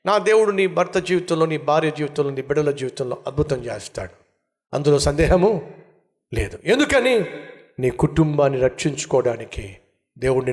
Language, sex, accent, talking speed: Telugu, male, native, 120 wpm